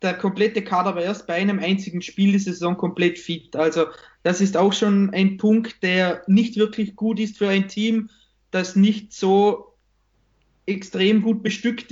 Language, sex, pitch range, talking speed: German, male, 185-210 Hz, 170 wpm